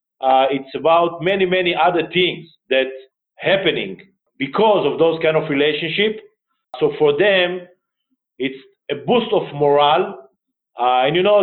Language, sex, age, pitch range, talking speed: English, male, 50-69, 150-190 Hz, 140 wpm